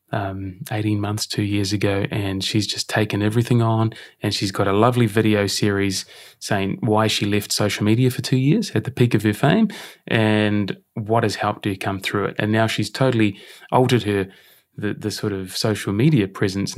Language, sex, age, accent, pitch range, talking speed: English, male, 20-39, Australian, 105-125 Hz, 195 wpm